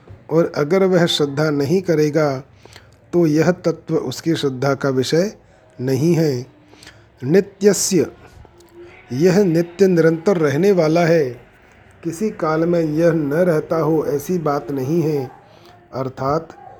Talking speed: 120 wpm